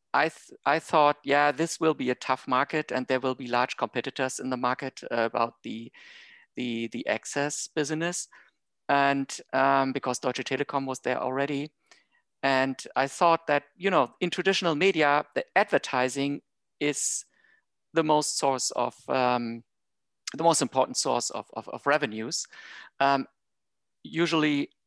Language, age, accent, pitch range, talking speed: English, 50-69, German, 125-150 Hz, 145 wpm